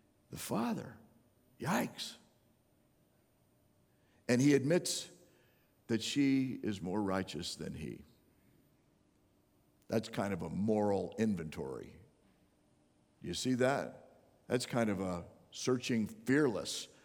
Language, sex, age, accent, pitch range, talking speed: English, male, 50-69, American, 115-165 Hz, 95 wpm